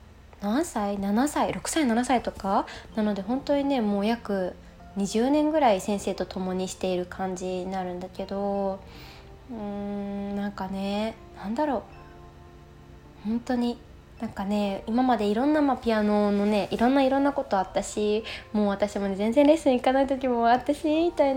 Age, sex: 20-39, female